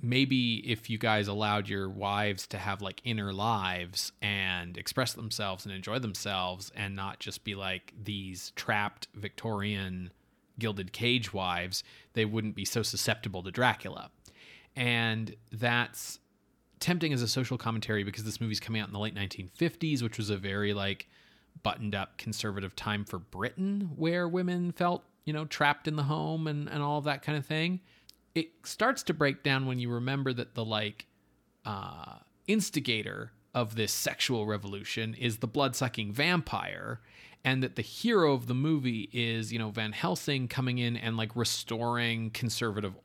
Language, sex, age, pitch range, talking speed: English, male, 30-49, 105-135 Hz, 165 wpm